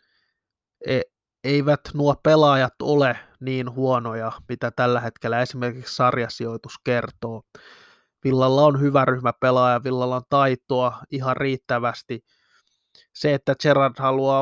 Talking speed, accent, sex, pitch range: 110 wpm, native, male, 125-135 Hz